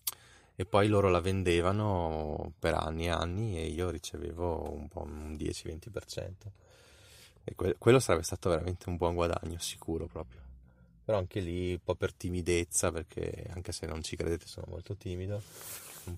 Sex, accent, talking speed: male, native, 165 wpm